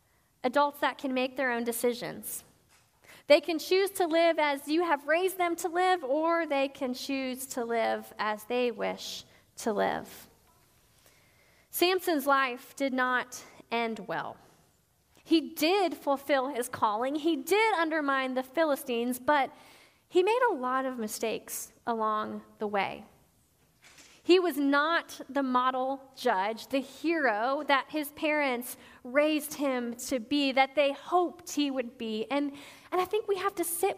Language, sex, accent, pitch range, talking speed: English, female, American, 260-340 Hz, 150 wpm